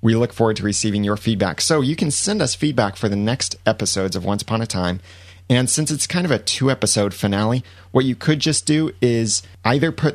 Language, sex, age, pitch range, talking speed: English, male, 30-49, 95-120 Hz, 225 wpm